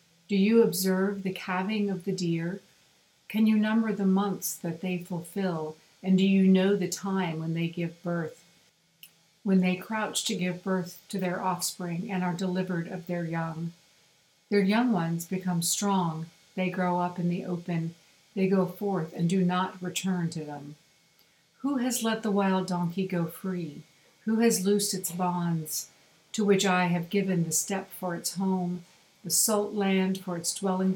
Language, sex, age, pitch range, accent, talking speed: English, female, 50-69, 175-195 Hz, American, 175 wpm